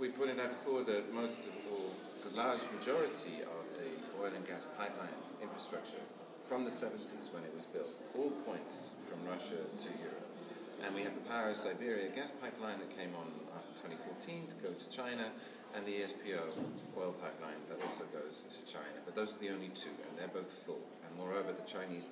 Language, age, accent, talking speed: English, 40-59, British, 200 wpm